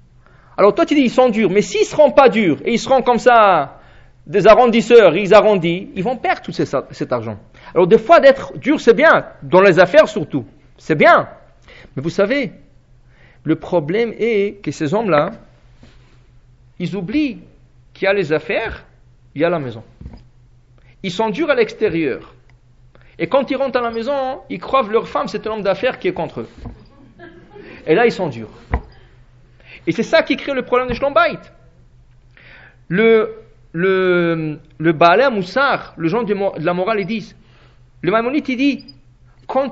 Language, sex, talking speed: English, male, 185 wpm